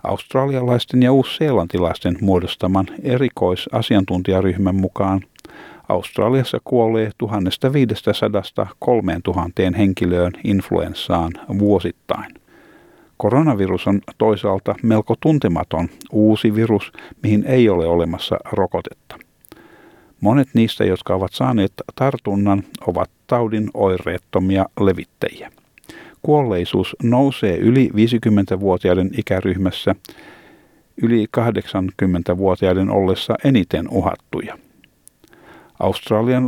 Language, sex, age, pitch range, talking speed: Finnish, male, 50-69, 90-115 Hz, 75 wpm